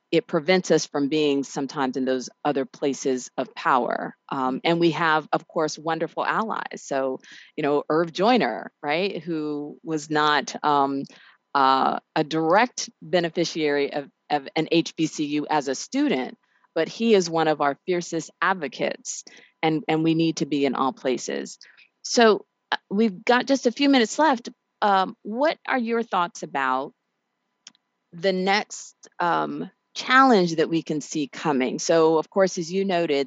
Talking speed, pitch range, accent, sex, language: 155 wpm, 145-190 Hz, American, female, English